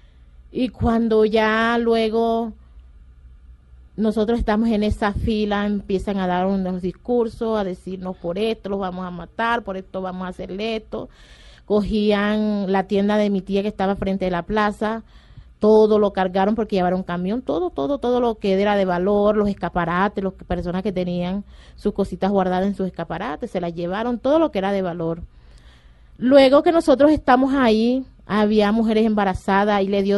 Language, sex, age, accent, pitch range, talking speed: Spanish, female, 30-49, American, 185-235 Hz, 170 wpm